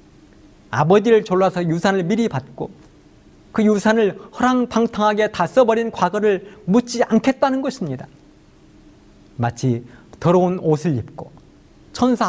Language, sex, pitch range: Korean, male, 135-215 Hz